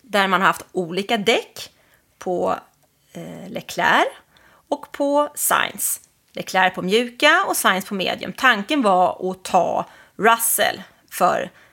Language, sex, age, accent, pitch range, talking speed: English, female, 30-49, Swedish, 190-255 Hz, 125 wpm